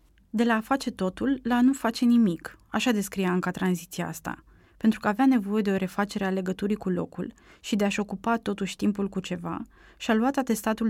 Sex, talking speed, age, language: female, 210 wpm, 20-39, Romanian